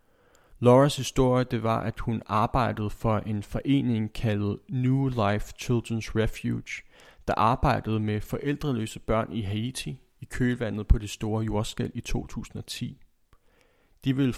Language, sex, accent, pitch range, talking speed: Danish, male, native, 110-130 Hz, 135 wpm